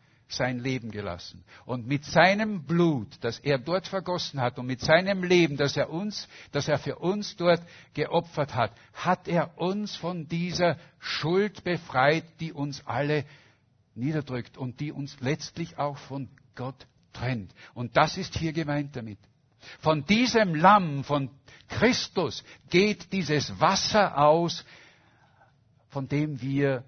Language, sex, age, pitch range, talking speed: German, male, 60-79, 125-170 Hz, 140 wpm